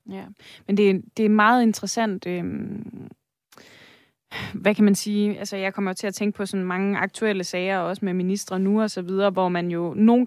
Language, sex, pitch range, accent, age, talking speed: Danish, female, 180-205 Hz, native, 20-39, 210 wpm